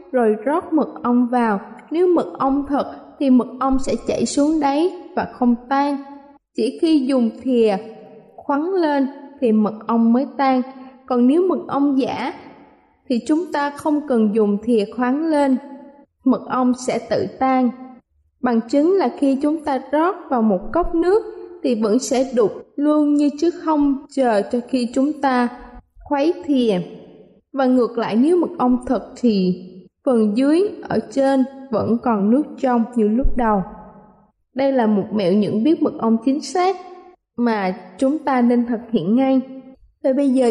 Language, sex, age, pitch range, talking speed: Vietnamese, female, 20-39, 230-295 Hz, 170 wpm